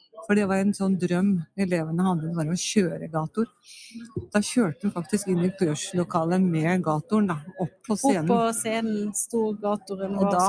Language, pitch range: English, 180-210 Hz